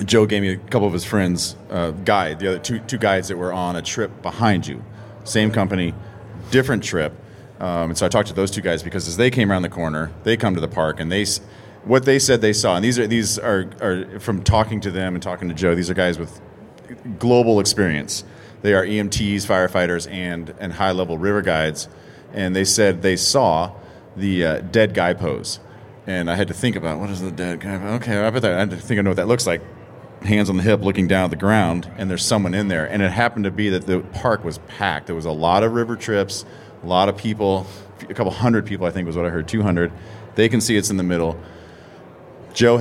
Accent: American